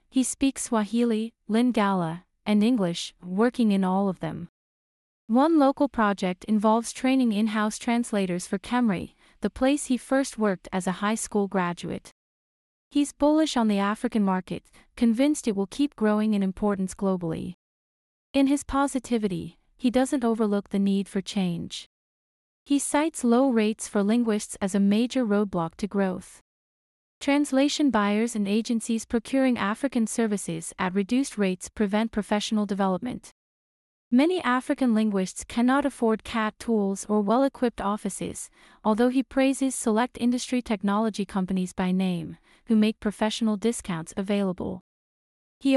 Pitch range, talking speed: 200-250 Hz, 135 wpm